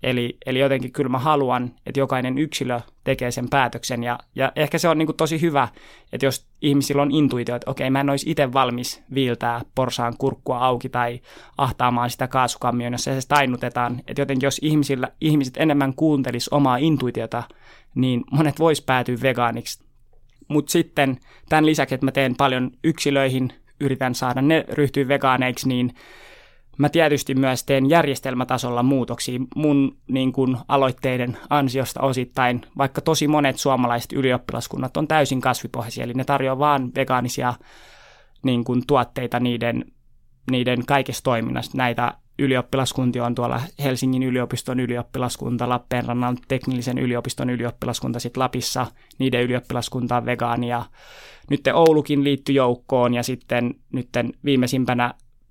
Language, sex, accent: Finnish, male, native